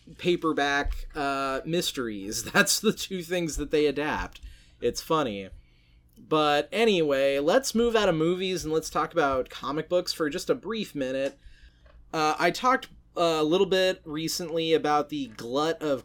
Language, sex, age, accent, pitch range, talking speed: English, male, 30-49, American, 140-175 Hz, 155 wpm